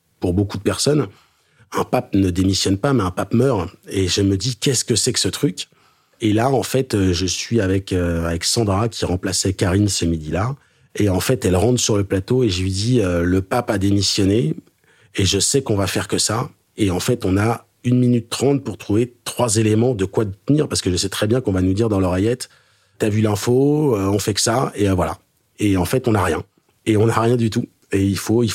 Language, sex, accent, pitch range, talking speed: French, male, French, 95-115 Hz, 245 wpm